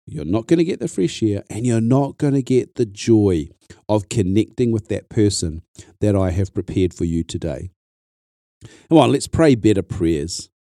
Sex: male